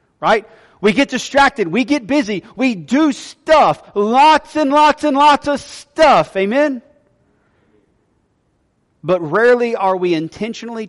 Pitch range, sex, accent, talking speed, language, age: 155-195 Hz, male, American, 125 wpm, English, 40-59